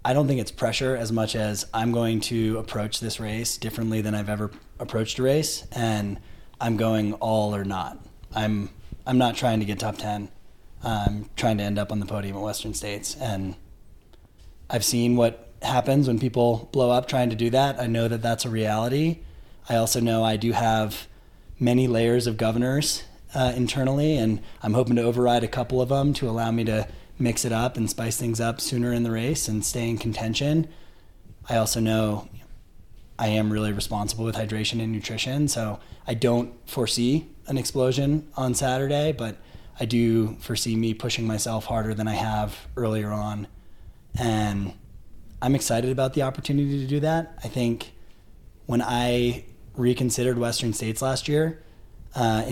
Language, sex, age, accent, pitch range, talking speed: English, male, 20-39, American, 105-125 Hz, 180 wpm